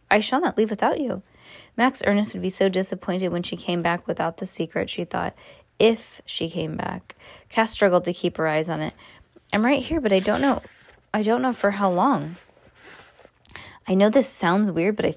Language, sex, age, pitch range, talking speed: English, female, 20-39, 180-225 Hz, 210 wpm